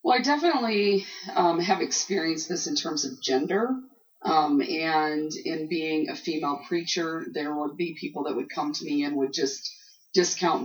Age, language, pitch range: 30-49, English, 150-200 Hz